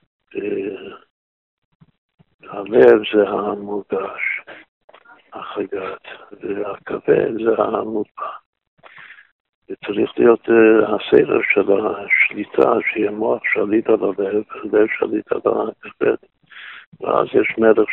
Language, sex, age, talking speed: Hebrew, male, 60-79, 80 wpm